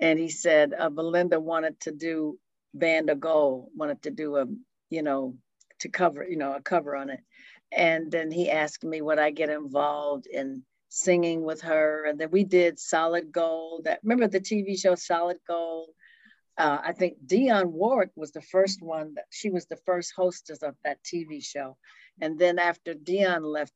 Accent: American